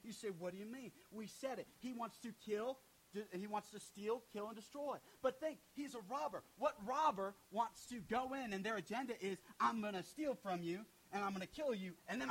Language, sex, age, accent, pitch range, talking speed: English, male, 30-49, American, 195-255 Hz, 240 wpm